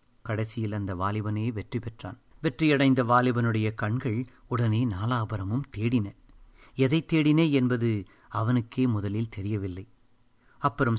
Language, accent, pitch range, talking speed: Tamil, native, 105-125 Hz, 100 wpm